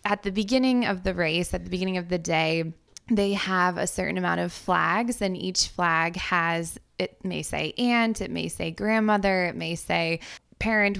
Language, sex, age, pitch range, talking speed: English, female, 20-39, 165-190 Hz, 190 wpm